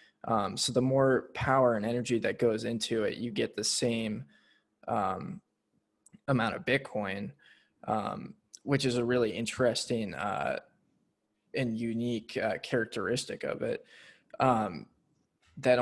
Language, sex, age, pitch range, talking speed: English, male, 20-39, 110-130 Hz, 130 wpm